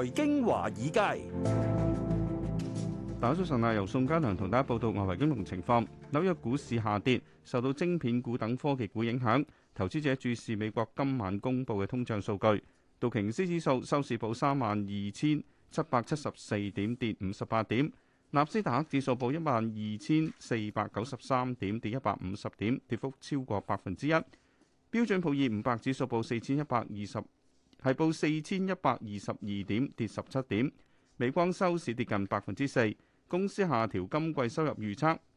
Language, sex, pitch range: Chinese, male, 105-145 Hz